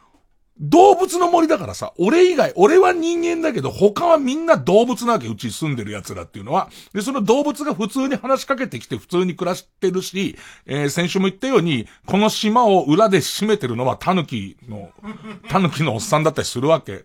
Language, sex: Japanese, male